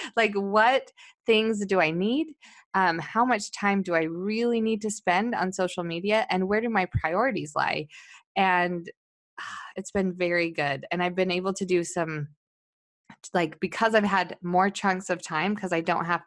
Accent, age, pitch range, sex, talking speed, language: American, 20-39, 170-210 Hz, female, 185 wpm, English